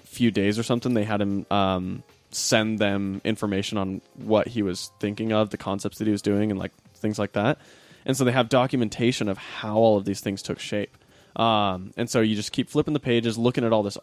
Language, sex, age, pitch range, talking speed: English, male, 20-39, 95-115 Hz, 230 wpm